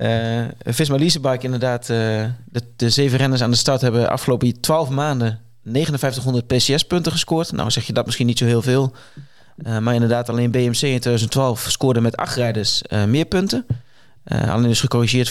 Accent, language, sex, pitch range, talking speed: Dutch, Dutch, male, 115-135 Hz, 180 wpm